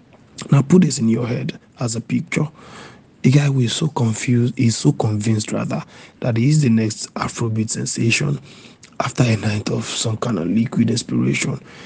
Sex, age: male, 50-69